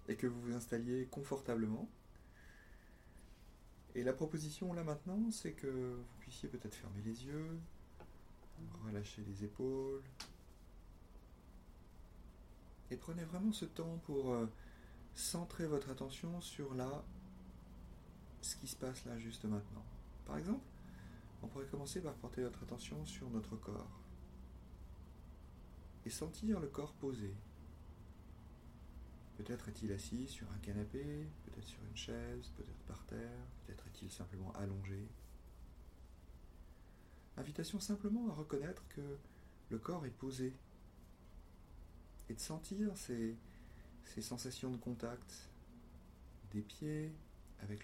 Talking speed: 120 wpm